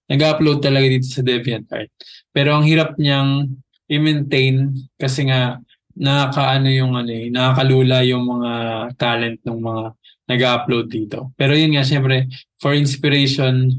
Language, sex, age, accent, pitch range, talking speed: Filipino, male, 20-39, native, 120-135 Hz, 125 wpm